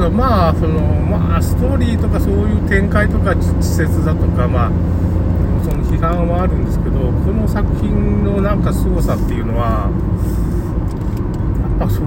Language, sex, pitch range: Japanese, male, 90-100 Hz